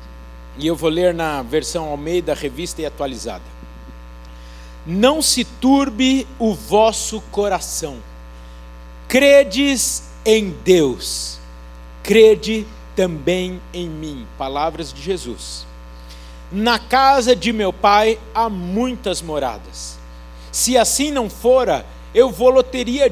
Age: 50-69